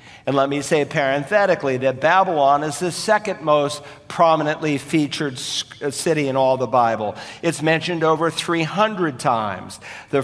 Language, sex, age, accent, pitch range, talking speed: English, male, 50-69, American, 135-165 Hz, 140 wpm